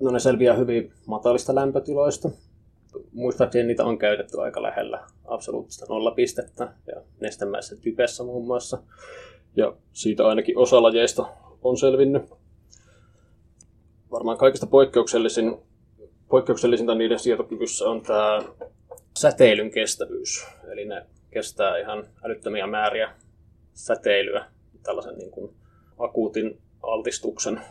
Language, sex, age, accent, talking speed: Finnish, male, 20-39, native, 100 wpm